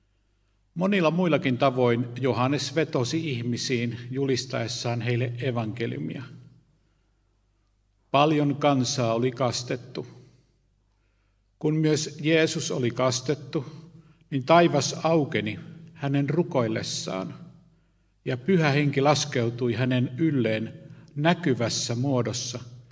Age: 50-69